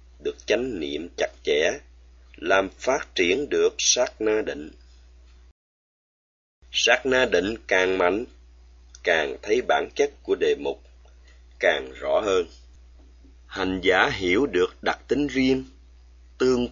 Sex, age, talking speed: male, 30-49, 125 wpm